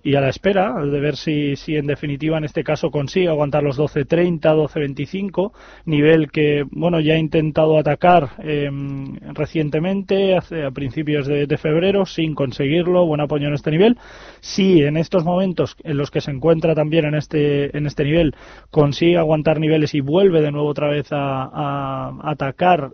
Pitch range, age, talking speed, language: 140-165 Hz, 20-39, 175 wpm, Spanish